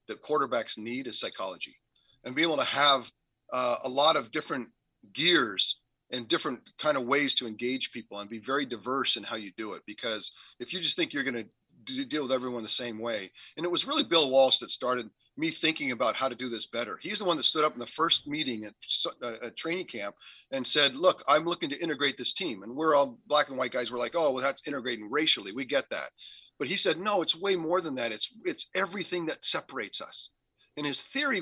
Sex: male